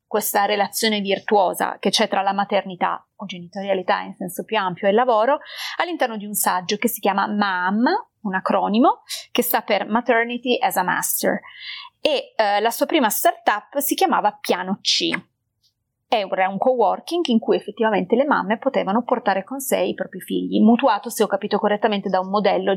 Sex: female